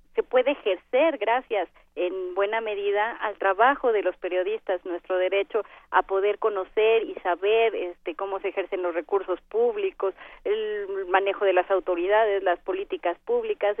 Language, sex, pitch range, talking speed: Spanish, female, 190-255 Hz, 145 wpm